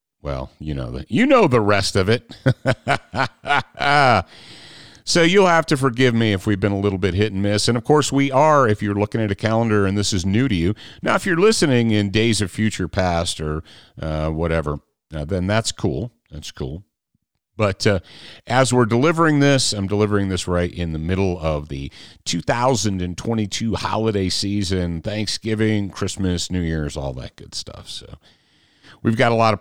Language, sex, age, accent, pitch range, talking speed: English, male, 40-59, American, 90-125 Hz, 180 wpm